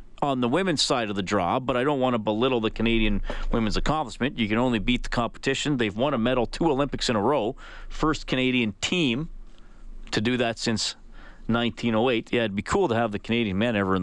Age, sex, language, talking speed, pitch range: 40-59, male, English, 220 wpm, 125-170 Hz